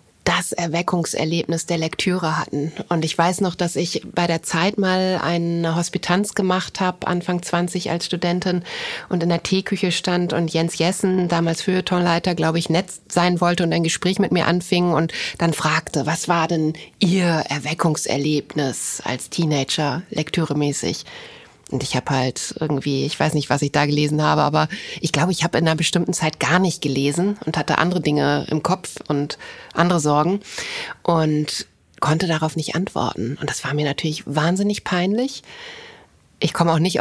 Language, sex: German, female